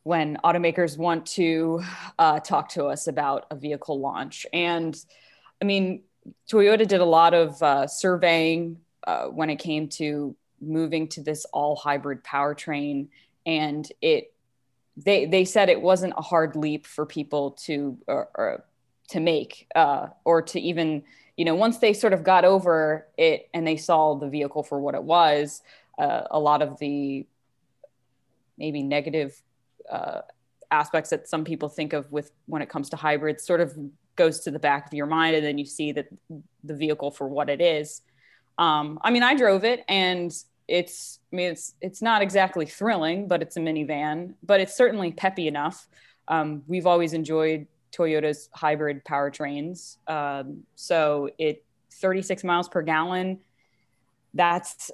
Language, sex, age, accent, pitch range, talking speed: English, female, 20-39, American, 145-175 Hz, 165 wpm